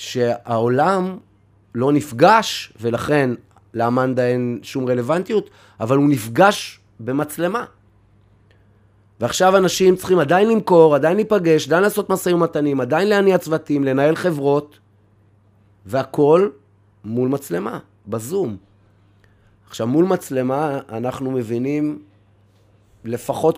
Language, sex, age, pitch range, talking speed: Hebrew, male, 30-49, 110-165 Hz, 95 wpm